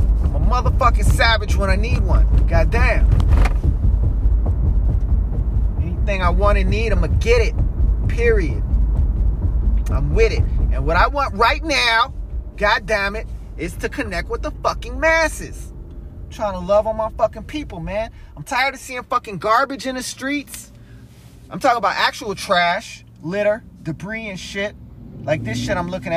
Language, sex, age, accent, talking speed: English, male, 30-49, American, 155 wpm